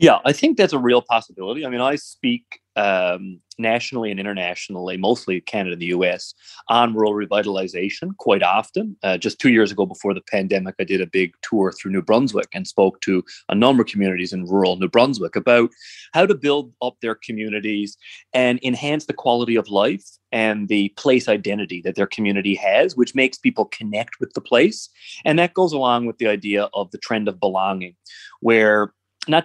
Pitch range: 105-145 Hz